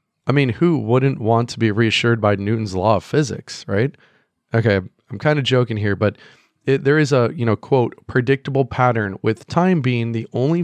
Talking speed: 190 wpm